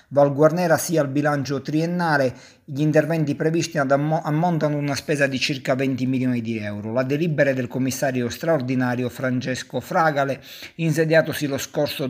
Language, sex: Italian, male